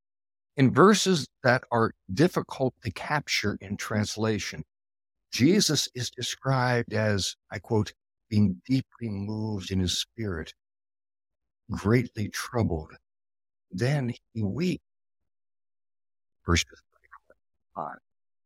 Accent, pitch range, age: American, 95-120 Hz, 60-79